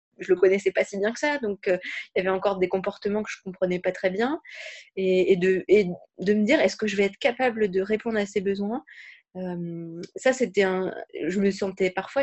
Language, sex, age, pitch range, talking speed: French, female, 20-39, 190-230 Hz, 235 wpm